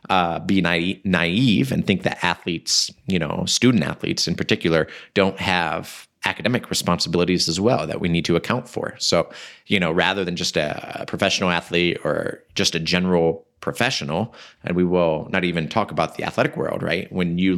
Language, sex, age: English, male, 30-49